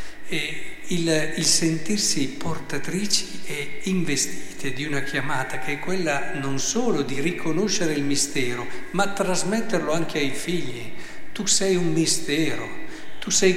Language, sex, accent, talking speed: Italian, male, native, 135 wpm